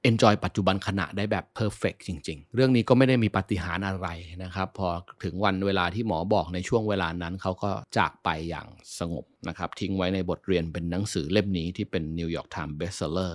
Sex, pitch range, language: male, 90-110 Hz, Thai